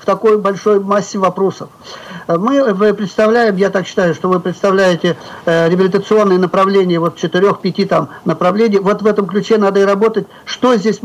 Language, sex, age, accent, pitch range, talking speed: Russian, male, 50-69, native, 180-210 Hz, 150 wpm